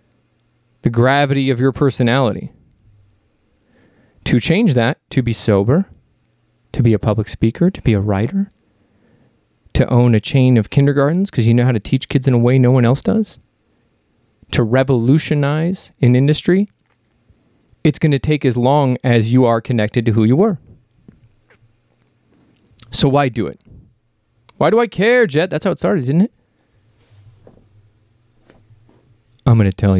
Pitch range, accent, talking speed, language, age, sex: 110-140 Hz, American, 155 wpm, English, 30-49, male